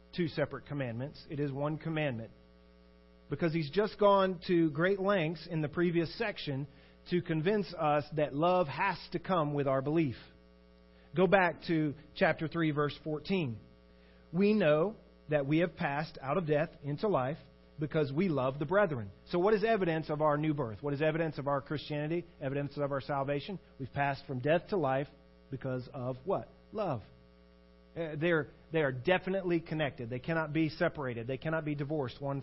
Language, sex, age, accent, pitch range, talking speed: English, male, 40-59, American, 130-170 Hz, 175 wpm